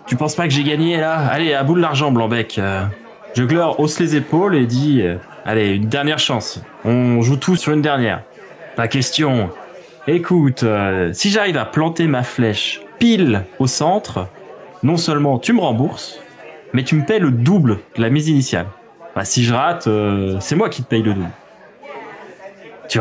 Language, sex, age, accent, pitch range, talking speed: French, male, 20-39, French, 115-155 Hz, 190 wpm